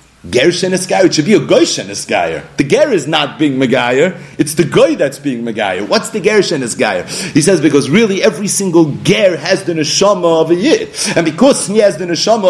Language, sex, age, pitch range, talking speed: English, male, 40-59, 150-205 Hz, 205 wpm